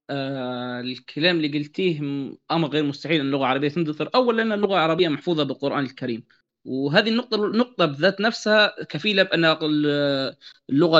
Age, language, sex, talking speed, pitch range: 20-39, Arabic, male, 135 wpm, 140-190 Hz